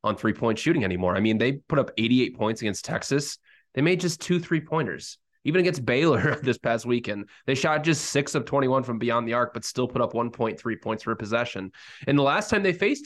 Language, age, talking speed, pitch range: English, 20-39, 220 wpm, 110-155 Hz